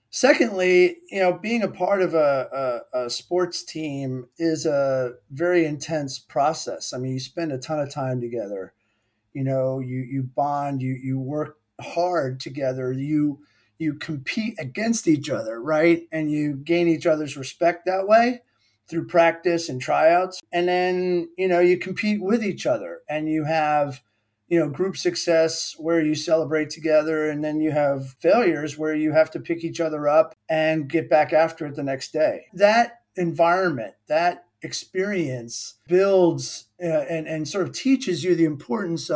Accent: American